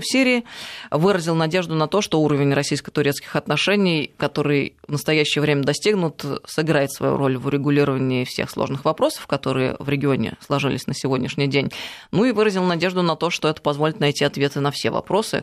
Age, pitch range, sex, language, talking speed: 20-39, 140-160 Hz, female, Russian, 170 wpm